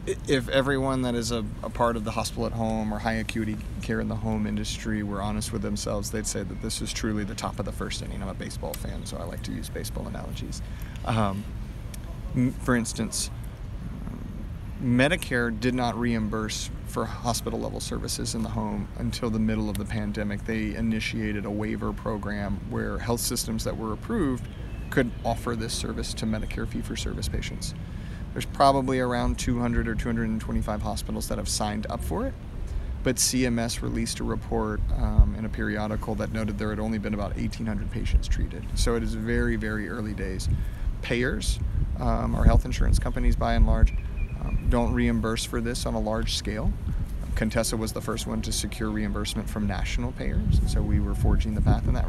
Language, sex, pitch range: English, male, 105-115 Hz